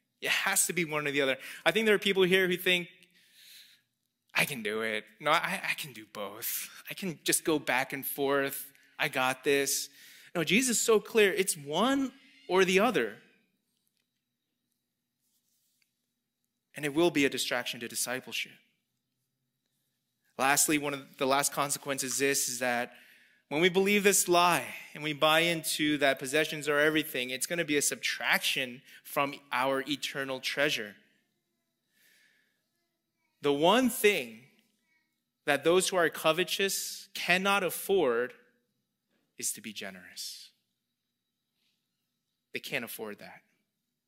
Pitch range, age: 135-190 Hz, 20-39